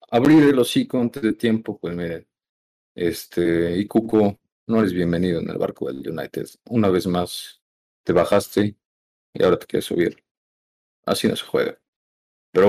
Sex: male